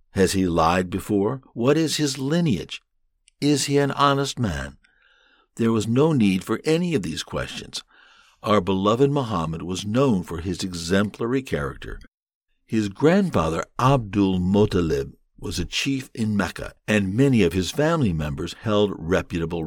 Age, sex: 60-79, male